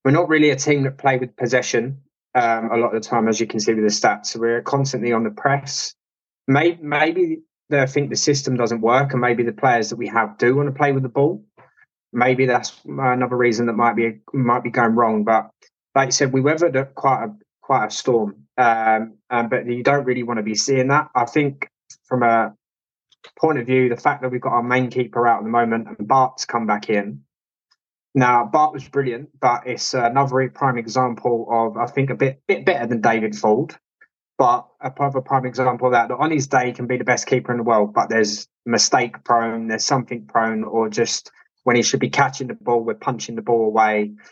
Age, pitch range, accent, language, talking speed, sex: 20-39, 115-135 Hz, British, English, 230 wpm, male